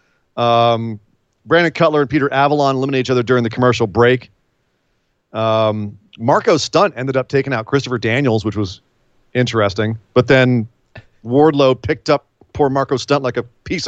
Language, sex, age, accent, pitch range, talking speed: English, male, 40-59, American, 115-150 Hz, 155 wpm